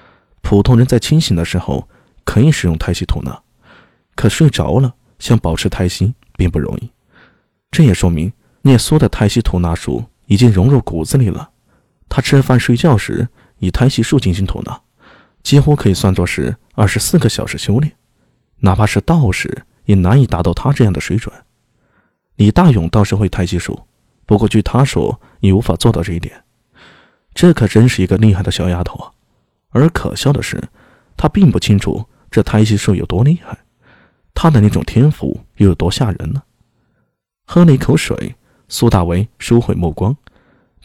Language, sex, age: Chinese, male, 20-39